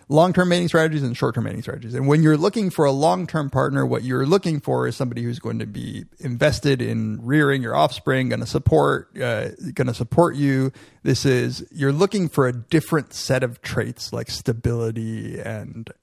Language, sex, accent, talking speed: English, male, American, 190 wpm